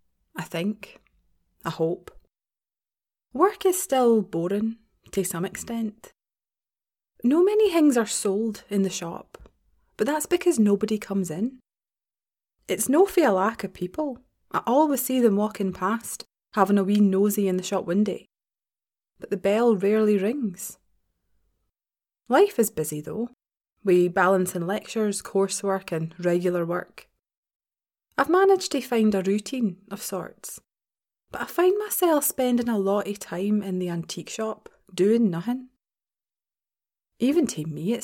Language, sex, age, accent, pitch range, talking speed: English, female, 20-39, British, 190-260 Hz, 140 wpm